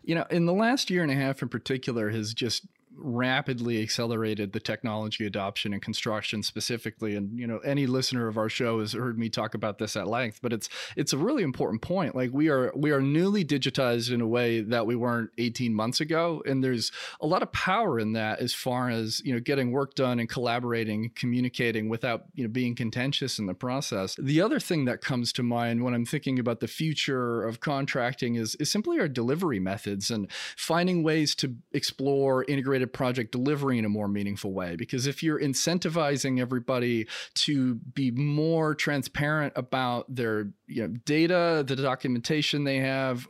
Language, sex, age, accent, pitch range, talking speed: English, male, 30-49, American, 115-150 Hz, 195 wpm